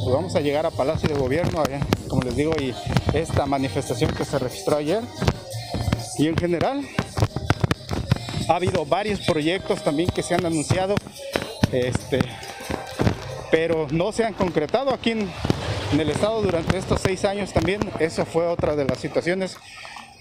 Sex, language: male, Spanish